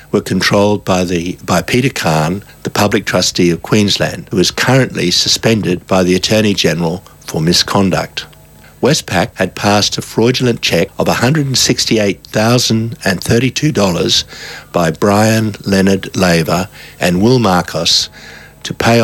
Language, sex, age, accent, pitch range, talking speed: English, male, 60-79, Australian, 90-115 Hz, 125 wpm